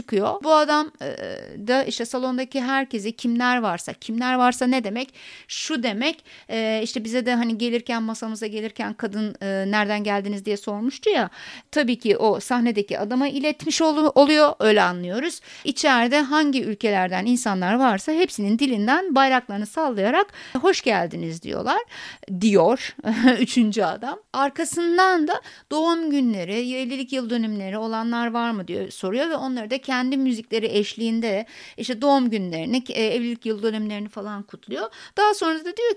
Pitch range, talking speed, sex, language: 220-295 Hz, 140 wpm, female, Turkish